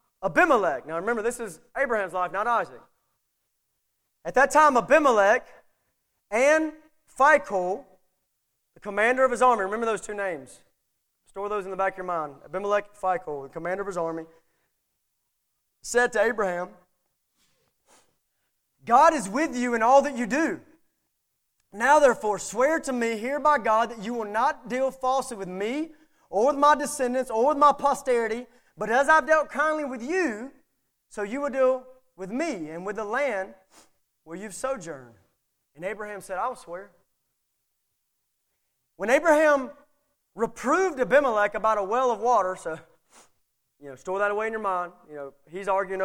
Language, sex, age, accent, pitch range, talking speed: English, male, 30-49, American, 190-275 Hz, 160 wpm